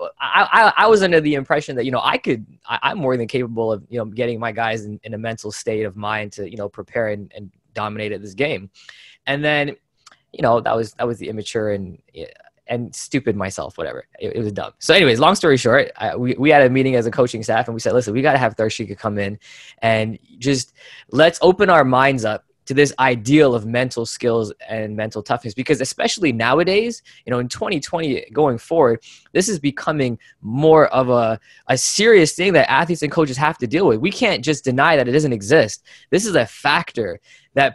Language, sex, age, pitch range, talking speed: English, male, 20-39, 110-145 Hz, 225 wpm